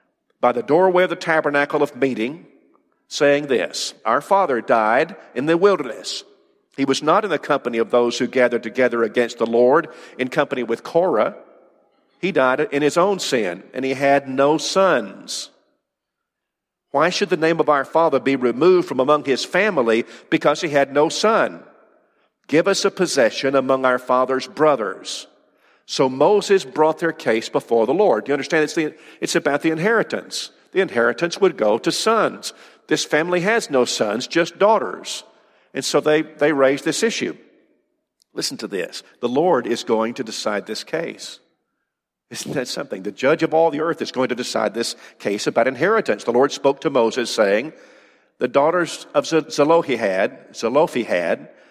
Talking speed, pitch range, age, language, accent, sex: 170 wpm, 130-170 Hz, 50-69, English, American, male